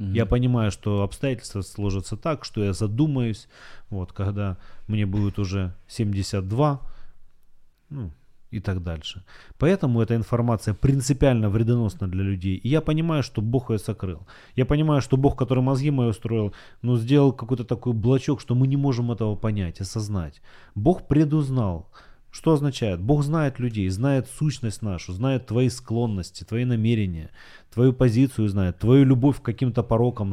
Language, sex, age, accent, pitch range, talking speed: Ukrainian, male, 30-49, native, 100-135 Hz, 150 wpm